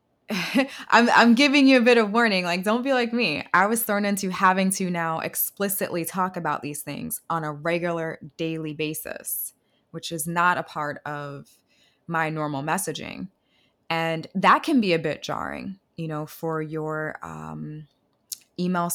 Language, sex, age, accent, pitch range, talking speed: English, female, 20-39, American, 155-190 Hz, 165 wpm